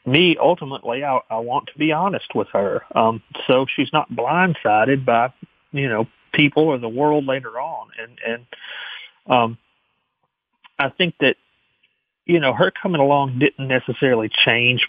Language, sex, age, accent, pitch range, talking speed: English, male, 40-59, American, 115-145 Hz, 155 wpm